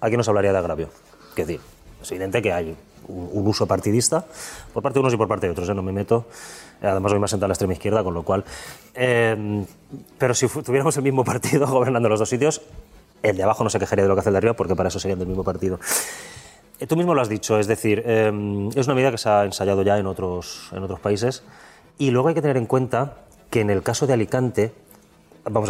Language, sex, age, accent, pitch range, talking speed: Spanish, male, 30-49, Spanish, 100-130 Hz, 240 wpm